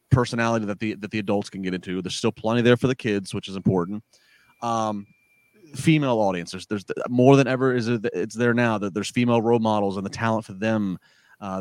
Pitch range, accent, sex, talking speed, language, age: 110-135 Hz, American, male, 215 wpm, English, 30-49